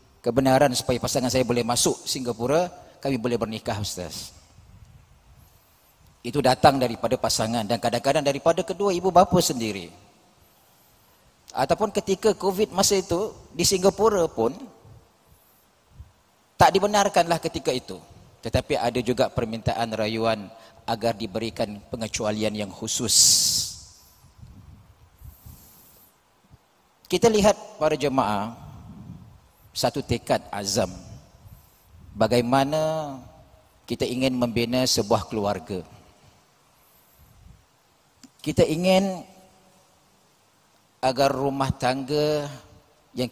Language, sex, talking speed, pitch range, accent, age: English, male, 85 wpm, 110-145 Hz, Indonesian, 40-59